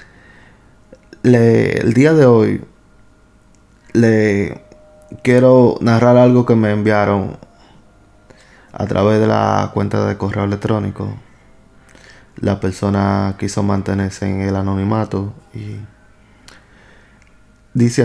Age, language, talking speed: 20-39, Spanish, 95 wpm